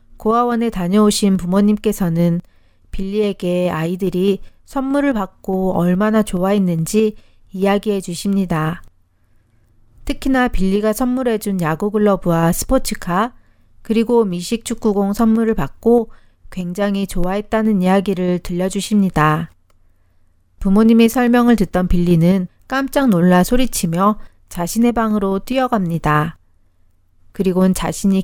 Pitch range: 175-215 Hz